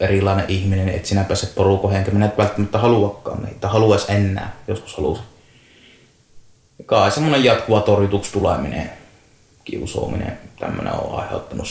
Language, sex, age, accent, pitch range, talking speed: Finnish, male, 30-49, native, 100-120 Hz, 110 wpm